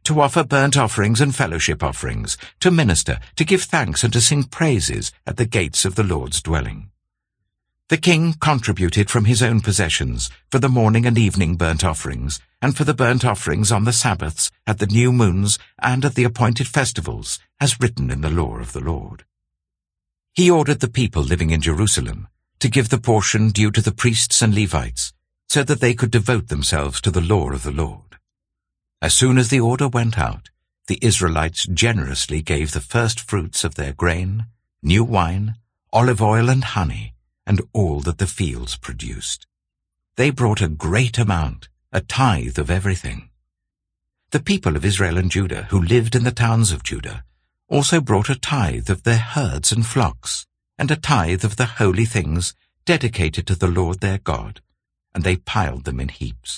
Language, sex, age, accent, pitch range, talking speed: English, male, 60-79, British, 80-120 Hz, 180 wpm